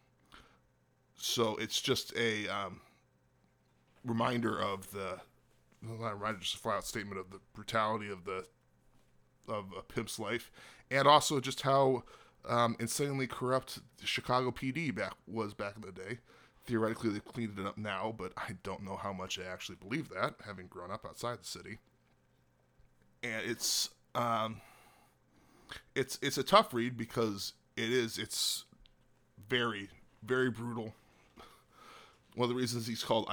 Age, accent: 20-39, American